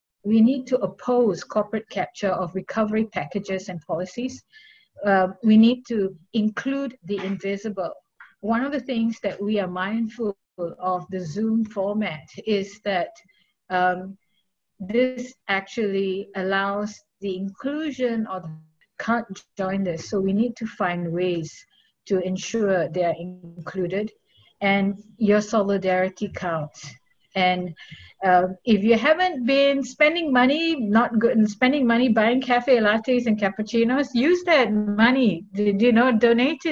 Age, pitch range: 50-69, 190-240 Hz